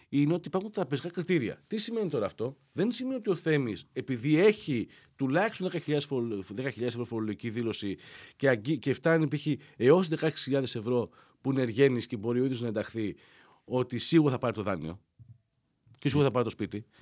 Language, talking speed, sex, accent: Greek, 170 wpm, male, native